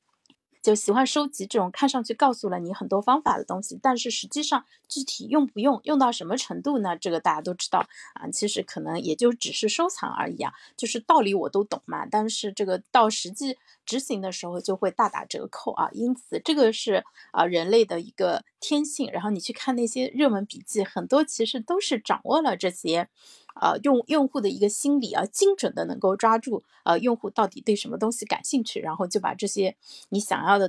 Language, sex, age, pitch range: Chinese, female, 30-49, 195-260 Hz